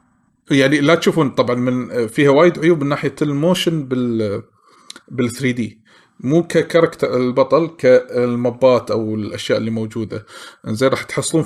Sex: male